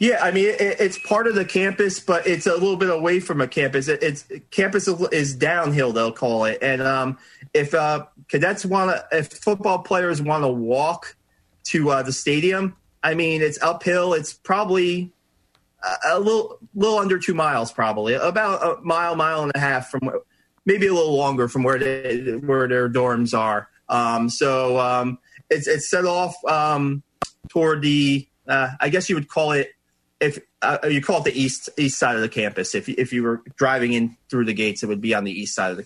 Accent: American